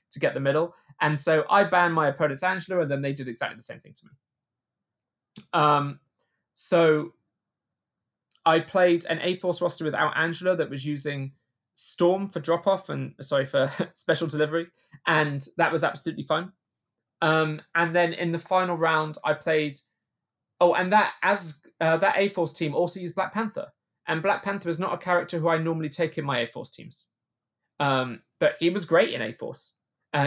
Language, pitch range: English, 150-180 Hz